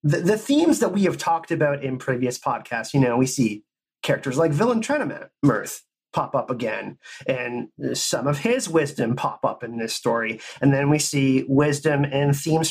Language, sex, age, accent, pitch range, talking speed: English, male, 30-49, American, 130-175 Hz, 185 wpm